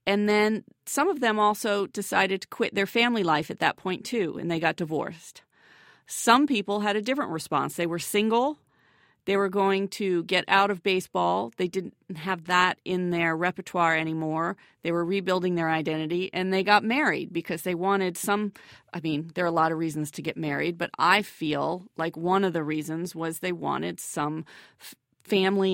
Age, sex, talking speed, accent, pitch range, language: 40-59, female, 190 wpm, American, 165-195 Hz, English